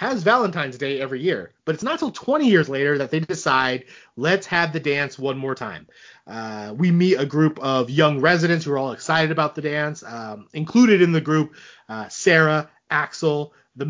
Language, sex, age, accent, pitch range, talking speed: English, male, 30-49, American, 130-170 Hz, 200 wpm